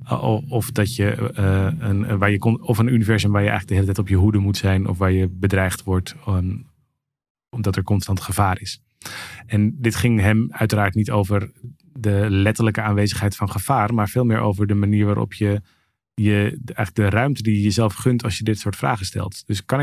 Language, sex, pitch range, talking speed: Dutch, male, 100-115 Hz, 210 wpm